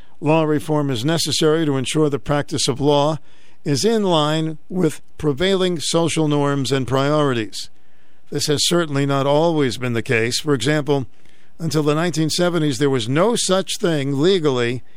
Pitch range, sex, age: 140-165 Hz, male, 50-69